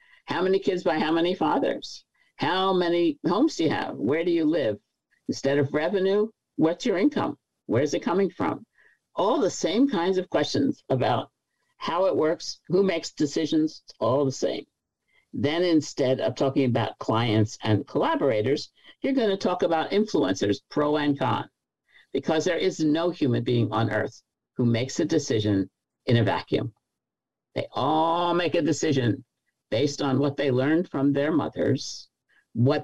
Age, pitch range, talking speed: 60-79, 120-165 Hz, 165 wpm